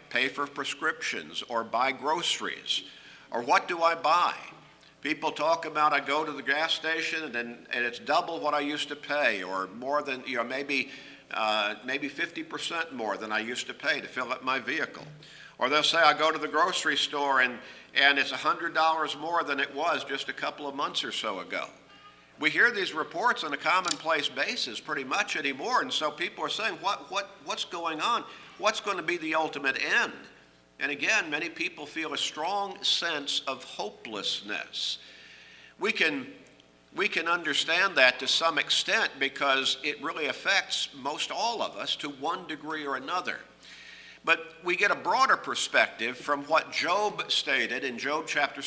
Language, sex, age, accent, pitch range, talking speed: English, male, 50-69, American, 125-160 Hz, 180 wpm